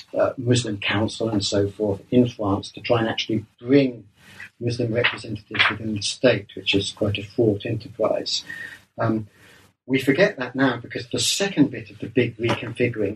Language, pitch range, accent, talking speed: English, 110-135 Hz, British, 170 wpm